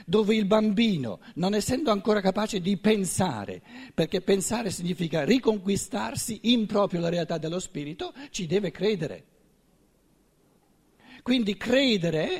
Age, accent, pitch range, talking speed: 50-69, native, 160-230 Hz, 115 wpm